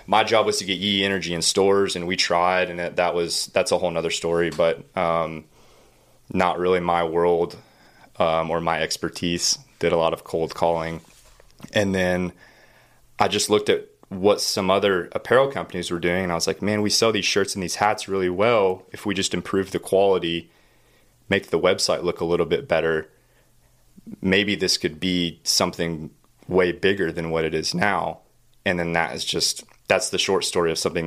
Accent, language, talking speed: American, English, 195 wpm